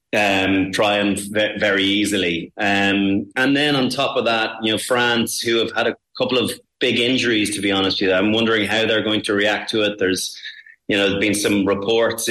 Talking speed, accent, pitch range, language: 215 wpm, Irish, 100-110 Hz, English